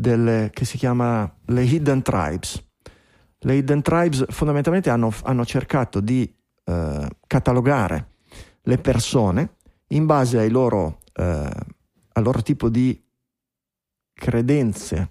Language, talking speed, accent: Italian, 110 wpm, native